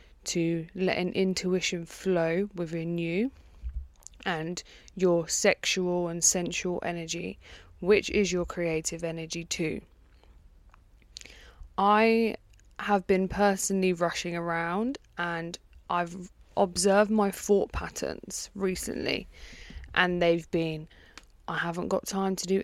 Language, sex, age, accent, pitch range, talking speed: English, female, 20-39, British, 170-195 Hz, 110 wpm